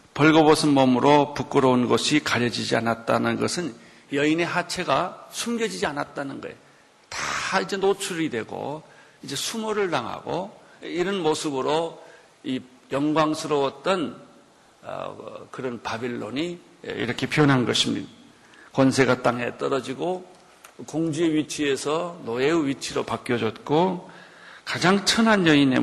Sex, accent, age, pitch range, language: male, native, 50-69, 140-200 Hz, Korean